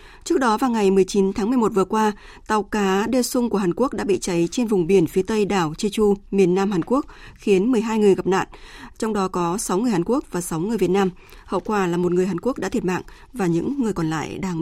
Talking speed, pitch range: 260 wpm, 185-225 Hz